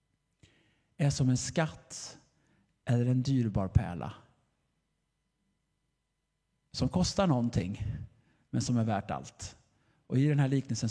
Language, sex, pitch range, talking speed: Swedish, male, 115-140 Hz, 115 wpm